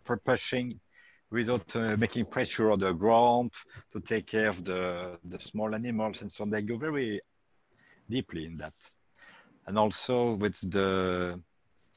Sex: male